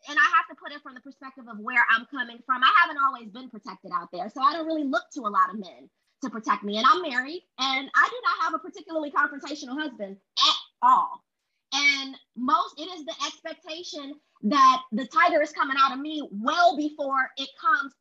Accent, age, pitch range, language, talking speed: American, 20-39, 255-325 Hz, English, 220 wpm